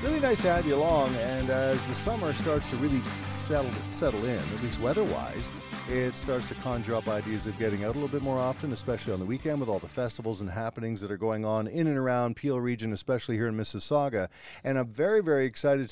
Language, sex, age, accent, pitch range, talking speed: English, male, 50-69, American, 115-145 Hz, 230 wpm